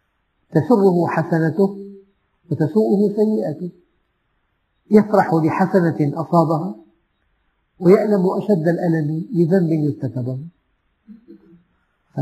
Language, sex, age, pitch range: Arabic, male, 50-69, 140-190 Hz